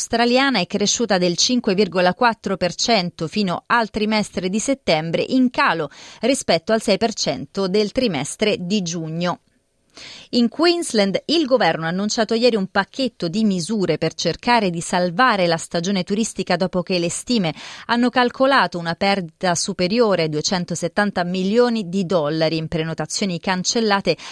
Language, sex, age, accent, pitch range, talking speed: Italian, female, 30-49, native, 145-220 Hz, 135 wpm